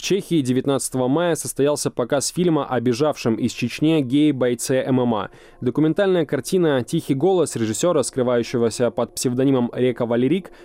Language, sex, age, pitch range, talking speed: Russian, male, 20-39, 125-155 Hz, 135 wpm